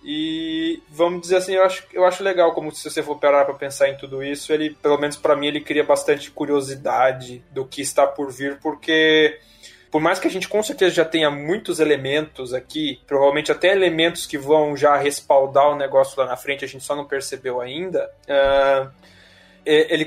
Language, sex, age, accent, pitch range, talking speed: Portuguese, male, 20-39, Brazilian, 145-175 Hz, 190 wpm